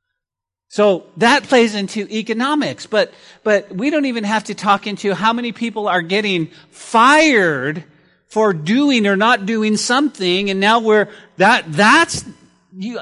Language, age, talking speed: English, 40-59, 145 wpm